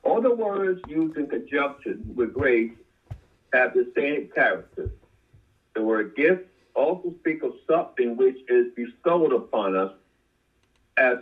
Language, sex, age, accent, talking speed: English, male, 60-79, American, 135 wpm